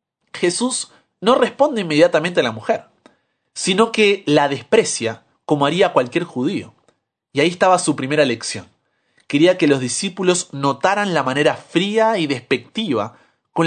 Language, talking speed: Spanish, 140 wpm